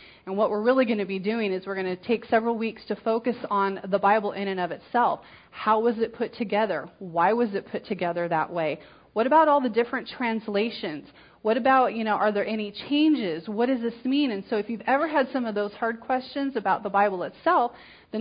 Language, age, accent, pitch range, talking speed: English, 30-49, American, 185-235 Hz, 230 wpm